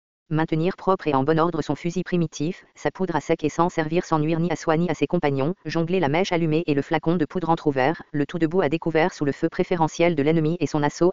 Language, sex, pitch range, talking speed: English, female, 145-170 Hz, 265 wpm